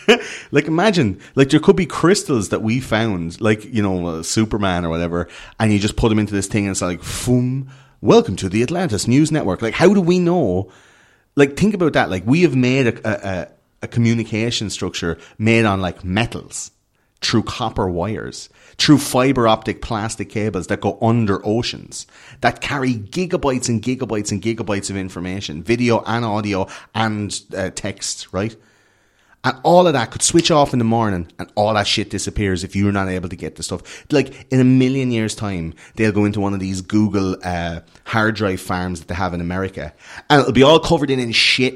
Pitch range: 100-135 Hz